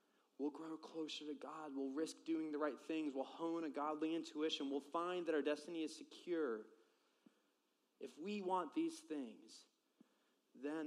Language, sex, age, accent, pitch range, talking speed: English, male, 20-39, American, 105-145 Hz, 160 wpm